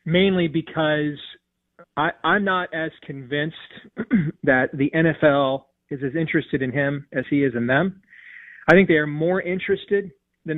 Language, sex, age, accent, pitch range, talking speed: English, male, 30-49, American, 140-165 Hz, 155 wpm